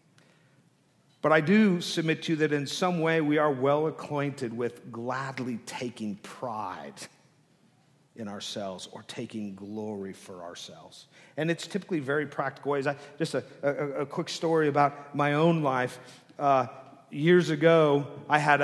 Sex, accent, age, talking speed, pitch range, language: male, American, 50-69, 150 wpm, 140-175 Hz, English